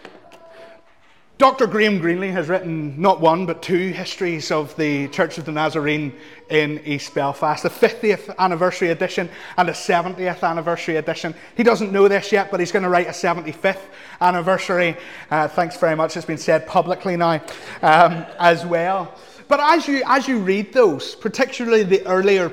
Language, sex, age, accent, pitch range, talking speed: English, male, 30-49, British, 165-210 Hz, 170 wpm